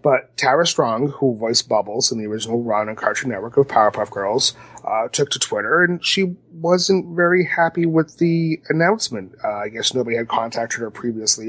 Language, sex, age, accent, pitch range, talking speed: English, male, 30-49, American, 115-155 Hz, 190 wpm